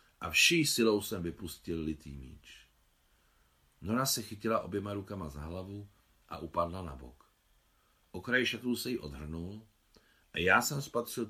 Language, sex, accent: Czech, male, native